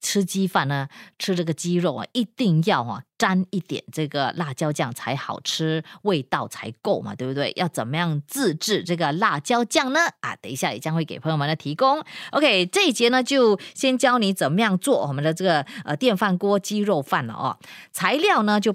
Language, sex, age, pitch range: Chinese, female, 20-39, 160-235 Hz